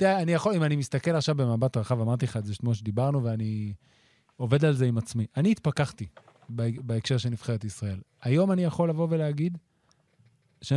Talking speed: 190 wpm